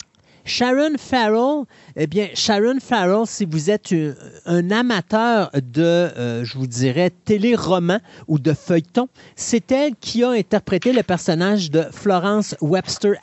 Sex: male